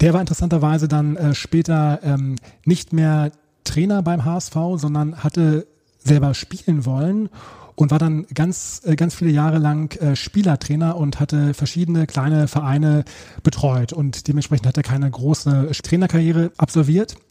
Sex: male